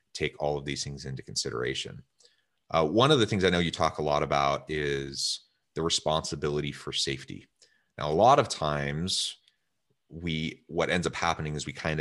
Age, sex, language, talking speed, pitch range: 30-49, male, English, 185 wpm, 70-85 Hz